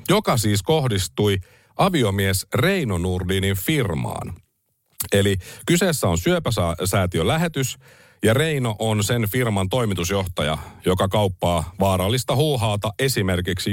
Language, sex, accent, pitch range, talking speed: Finnish, male, native, 90-125 Hz, 100 wpm